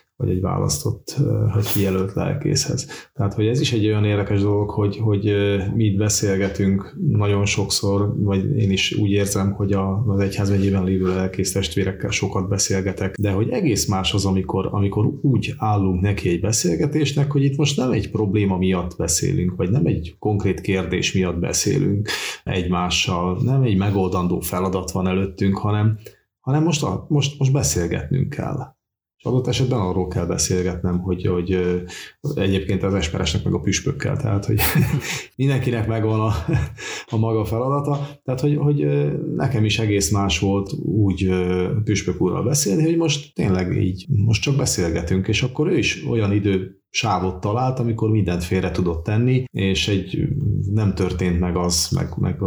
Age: 30-49